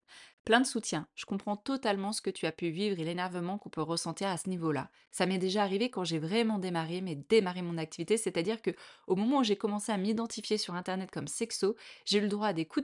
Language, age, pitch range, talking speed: French, 20-39, 165-220 Hz, 245 wpm